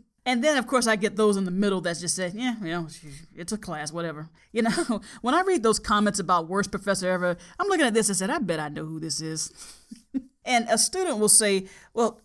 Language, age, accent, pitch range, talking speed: English, 40-59, American, 185-250 Hz, 245 wpm